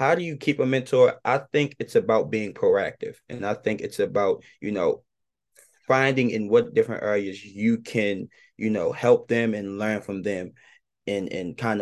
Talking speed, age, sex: 190 wpm, 20-39, male